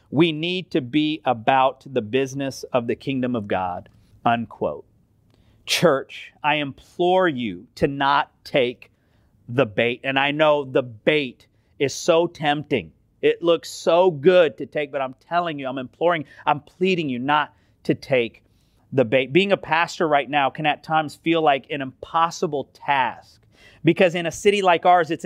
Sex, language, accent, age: male, English, American, 40-59